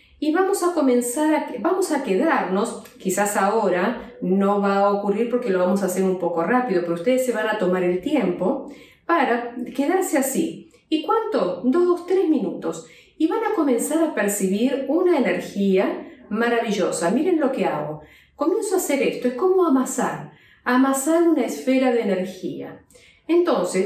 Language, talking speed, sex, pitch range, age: Spanish, 160 wpm, female, 200-305 Hz, 50-69